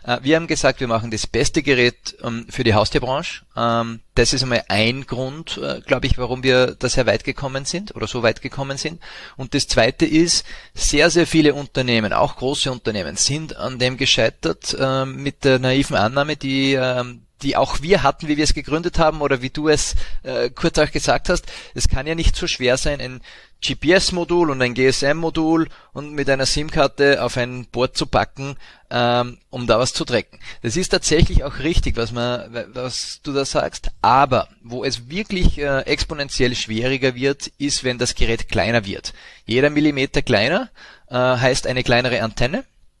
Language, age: German, 30-49